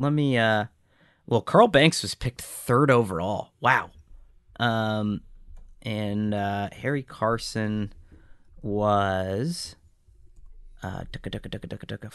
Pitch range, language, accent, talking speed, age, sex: 95-120 Hz, English, American, 120 wpm, 30-49, male